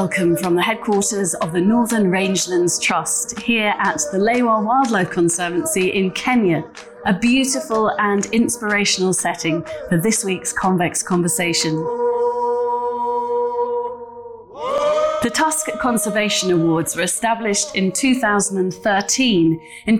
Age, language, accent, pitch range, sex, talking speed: 30-49, English, British, 180-240 Hz, female, 110 wpm